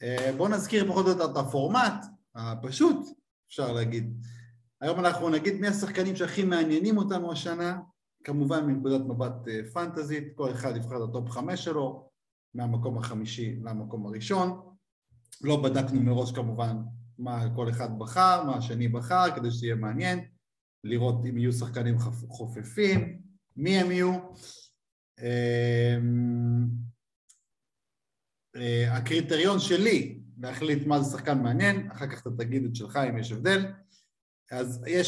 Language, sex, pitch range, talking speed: Hebrew, male, 120-170 Hz, 130 wpm